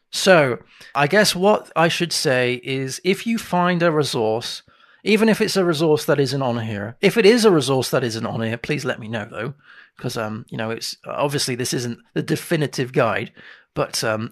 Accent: British